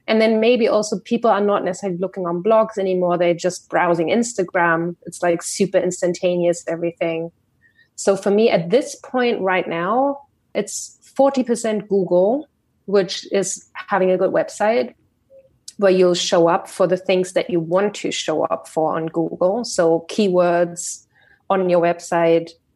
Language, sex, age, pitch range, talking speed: English, female, 30-49, 170-200 Hz, 155 wpm